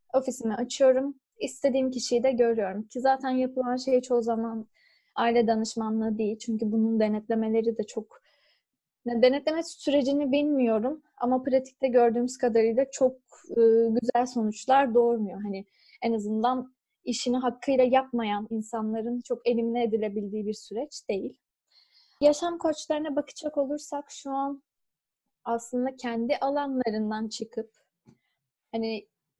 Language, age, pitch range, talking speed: Turkish, 10-29, 230-280 Hz, 110 wpm